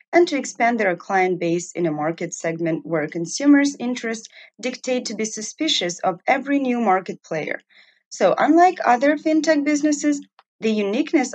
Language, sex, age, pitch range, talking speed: English, female, 30-49, 180-265 Hz, 155 wpm